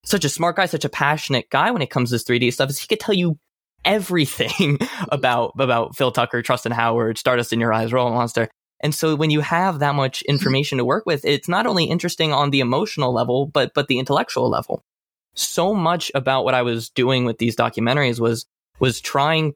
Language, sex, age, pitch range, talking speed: English, male, 20-39, 120-145 Hz, 215 wpm